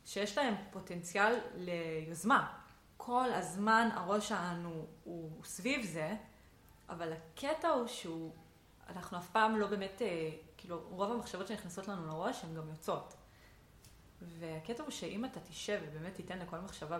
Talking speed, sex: 140 wpm, female